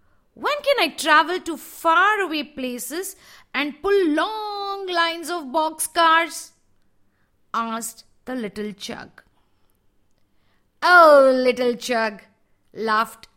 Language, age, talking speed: English, 50-69, 95 wpm